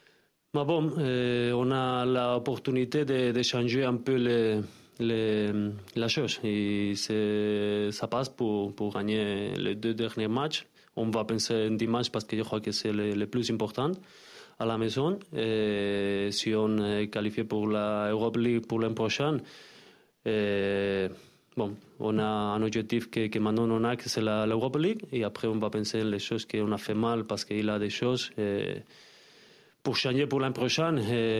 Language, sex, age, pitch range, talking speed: French, male, 20-39, 105-120 Hz, 180 wpm